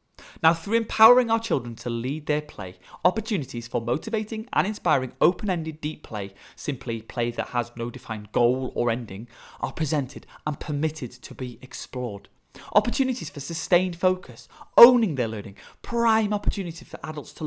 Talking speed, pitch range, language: 160 wpm, 120-185 Hz, English